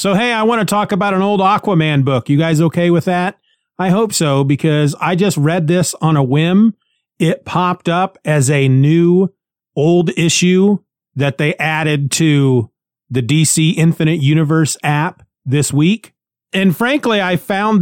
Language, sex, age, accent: English, male, 30-49, American